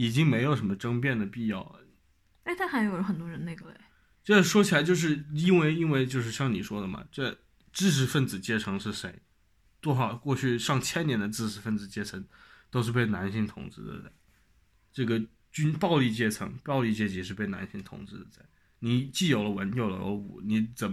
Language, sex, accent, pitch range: Chinese, male, native, 100-125 Hz